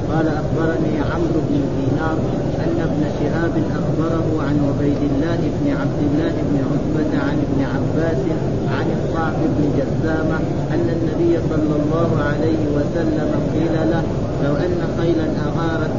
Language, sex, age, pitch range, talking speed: Arabic, male, 30-49, 145-165 Hz, 135 wpm